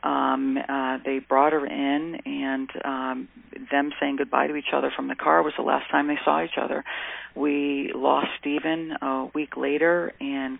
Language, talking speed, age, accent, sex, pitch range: English, 180 wpm, 40-59, American, female, 130-155 Hz